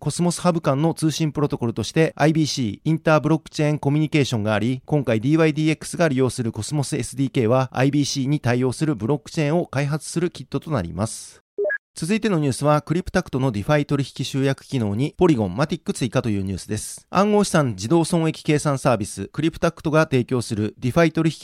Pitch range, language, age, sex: 130-165 Hz, Japanese, 30-49, male